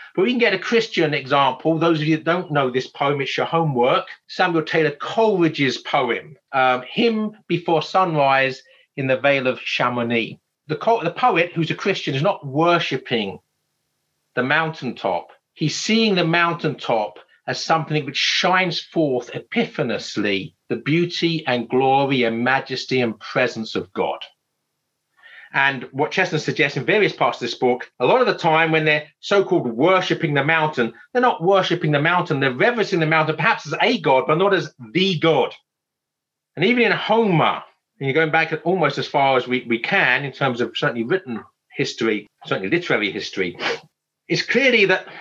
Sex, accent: male, British